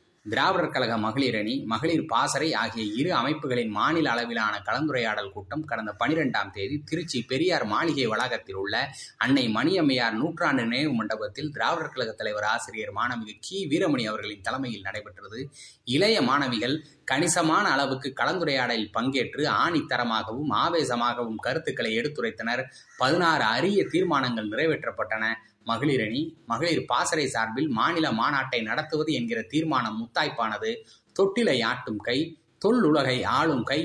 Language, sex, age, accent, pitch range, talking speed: Tamil, male, 20-39, native, 115-150 Hz, 115 wpm